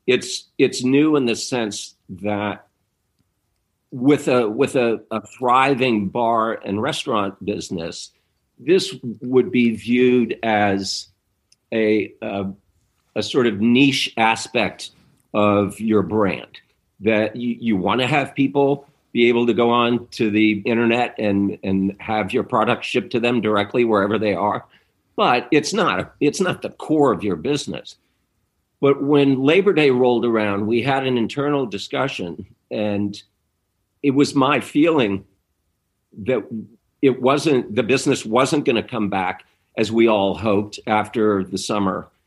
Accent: American